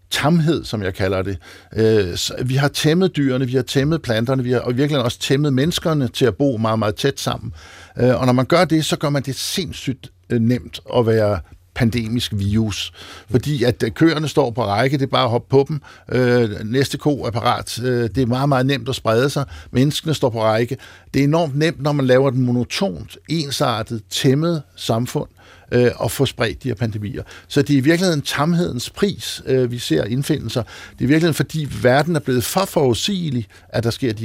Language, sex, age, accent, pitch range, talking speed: Danish, male, 60-79, native, 110-145 Hz, 195 wpm